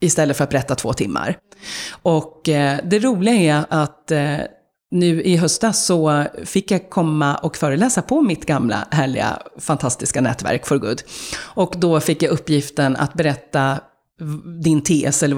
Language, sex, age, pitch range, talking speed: Swedish, female, 30-49, 145-185 Hz, 155 wpm